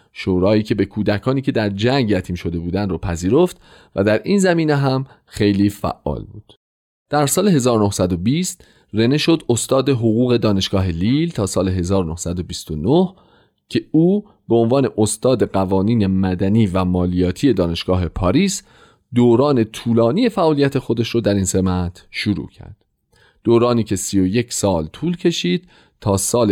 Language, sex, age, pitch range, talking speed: Persian, male, 40-59, 95-140 Hz, 140 wpm